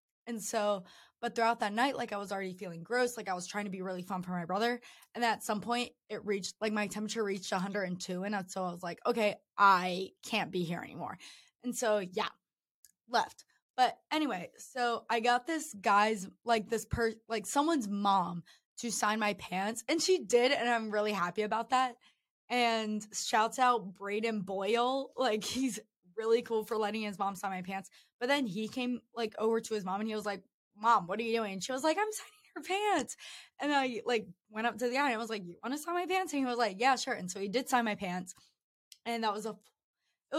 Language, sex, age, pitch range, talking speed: English, female, 20-39, 200-240 Hz, 225 wpm